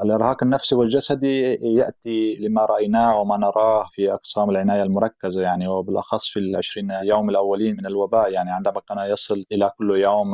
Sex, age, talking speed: male, 20-39, 155 wpm